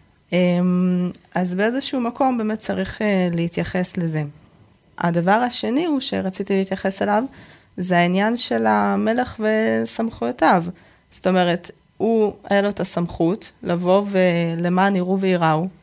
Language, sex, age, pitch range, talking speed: Hebrew, female, 20-39, 165-200 Hz, 110 wpm